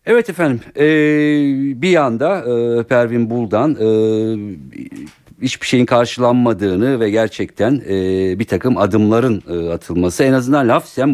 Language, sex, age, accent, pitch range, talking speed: Turkish, male, 50-69, native, 85-115 Hz, 125 wpm